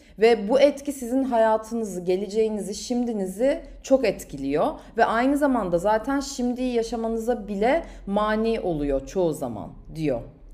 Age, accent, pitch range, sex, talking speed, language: 30-49, native, 195-255 Hz, female, 120 wpm, Turkish